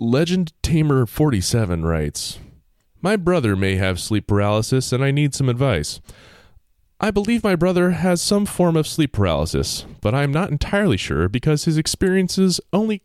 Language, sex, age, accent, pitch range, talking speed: English, male, 20-39, American, 100-165 Hz, 155 wpm